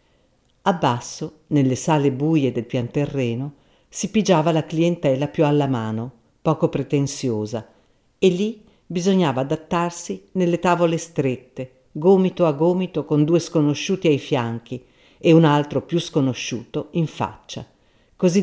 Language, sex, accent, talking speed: Italian, female, native, 125 wpm